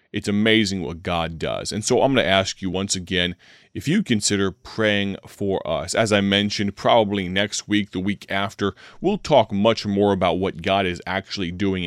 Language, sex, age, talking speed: English, male, 30-49, 195 wpm